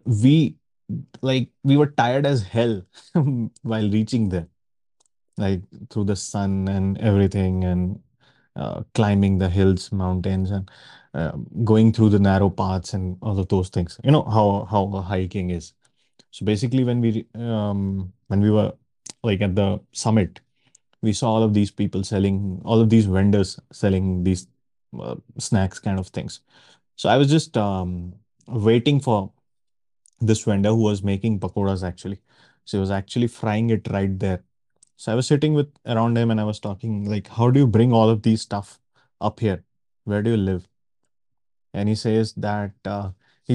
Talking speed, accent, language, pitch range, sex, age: 170 wpm, Indian, English, 95-115 Hz, male, 30-49